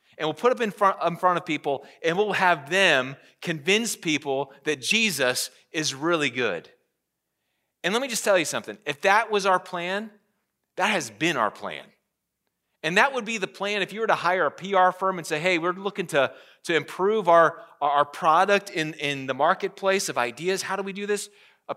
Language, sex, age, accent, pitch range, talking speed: English, male, 30-49, American, 140-195 Hz, 205 wpm